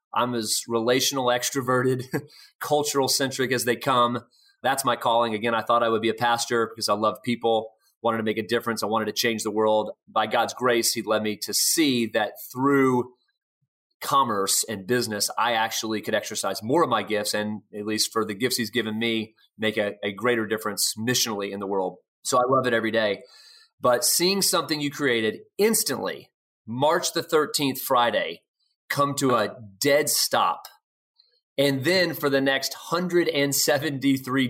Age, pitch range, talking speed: 30-49, 110-140 Hz, 175 wpm